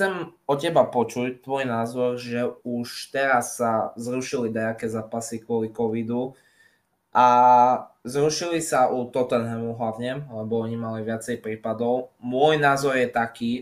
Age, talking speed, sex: 20-39, 130 wpm, male